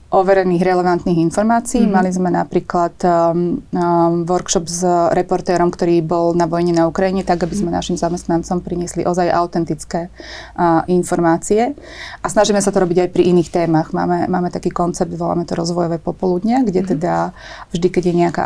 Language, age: Slovak, 30-49